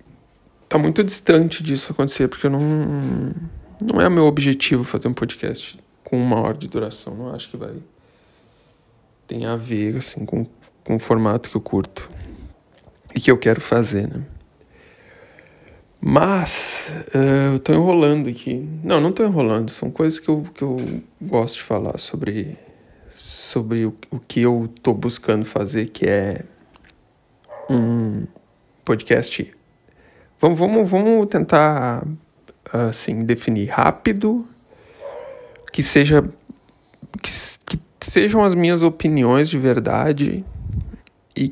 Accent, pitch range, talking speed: Brazilian, 120-155 Hz, 125 wpm